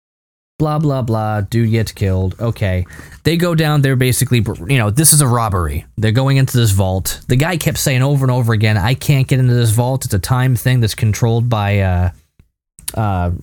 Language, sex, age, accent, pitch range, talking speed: English, male, 20-39, American, 95-135 Hz, 205 wpm